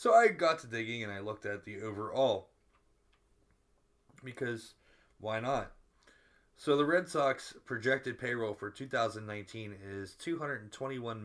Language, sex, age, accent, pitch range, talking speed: English, male, 20-39, American, 100-135 Hz, 130 wpm